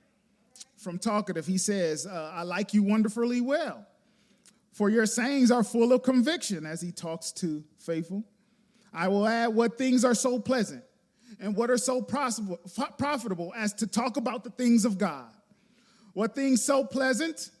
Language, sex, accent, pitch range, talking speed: English, male, American, 210-270 Hz, 160 wpm